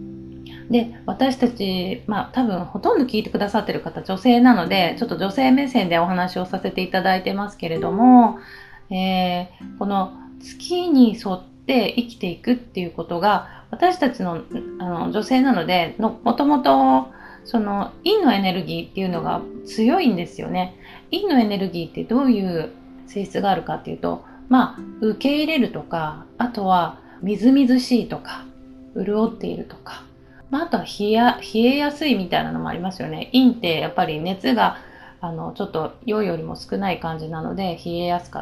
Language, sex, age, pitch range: Japanese, female, 40-59, 180-250 Hz